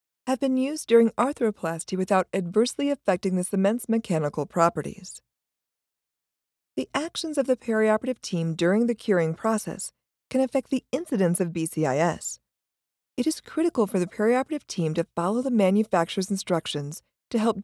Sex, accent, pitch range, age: female, American, 170-250 Hz, 40-59